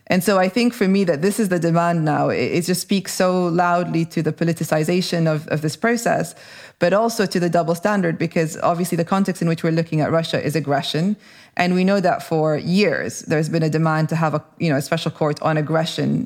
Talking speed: 230 wpm